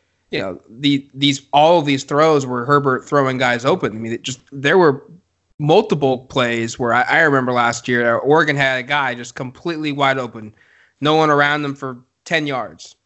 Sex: male